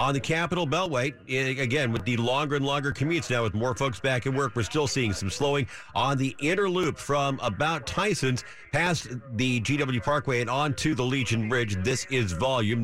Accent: American